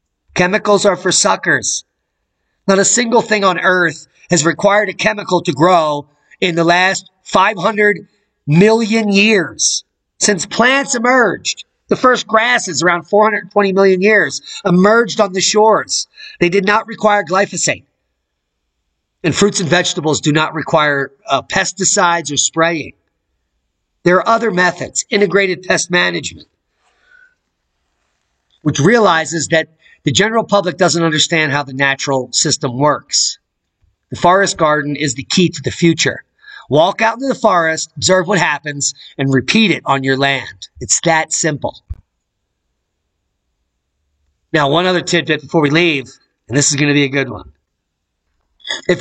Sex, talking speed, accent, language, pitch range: male, 140 wpm, American, English, 140-200 Hz